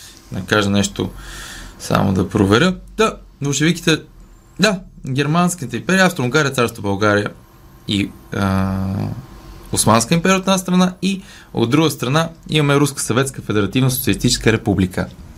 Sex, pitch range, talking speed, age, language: male, 100-150 Hz, 120 wpm, 20-39, Bulgarian